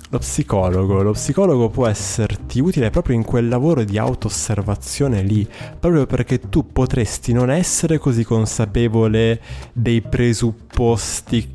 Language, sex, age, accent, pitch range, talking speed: Italian, male, 20-39, native, 105-125 Hz, 130 wpm